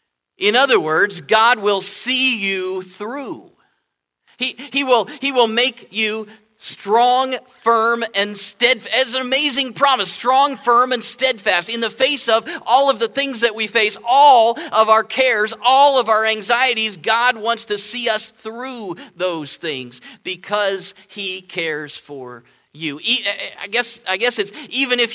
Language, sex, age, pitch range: English, male, 40-59, 175-240 Hz